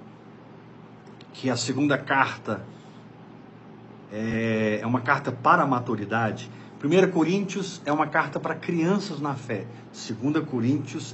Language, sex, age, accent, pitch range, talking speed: Portuguese, male, 50-69, Brazilian, 125-185 Hz, 120 wpm